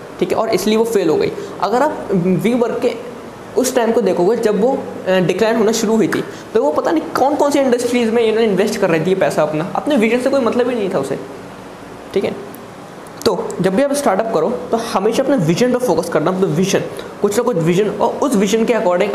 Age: 20-39